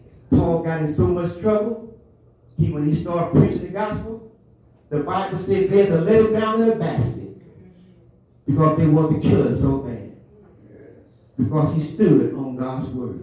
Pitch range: 120-155 Hz